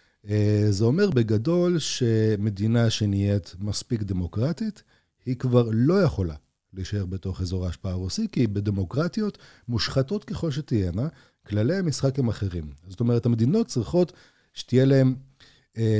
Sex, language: male, Hebrew